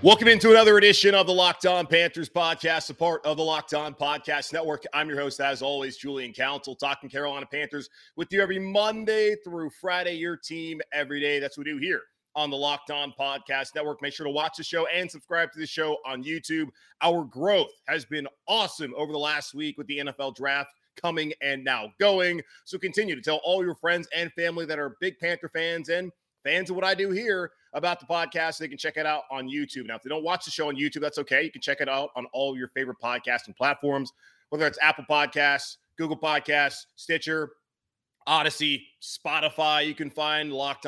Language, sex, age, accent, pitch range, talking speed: English, male, 30-49, American, 140-170 Hz, 215 wpm